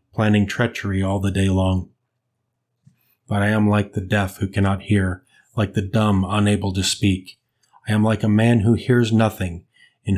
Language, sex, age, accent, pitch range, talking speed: English, male, 30-49, American, 95-115 Hz, 175 wpm